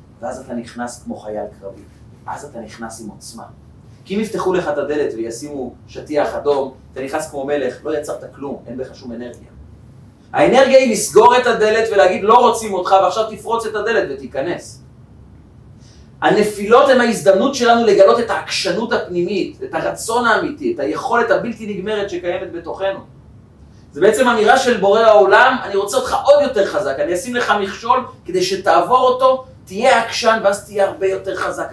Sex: male